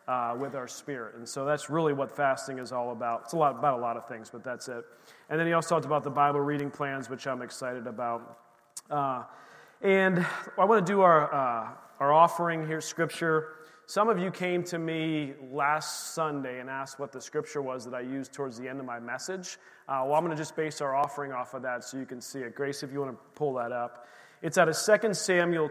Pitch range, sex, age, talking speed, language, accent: 135-170 Hz, male, 30-49, 240 wpm, English, American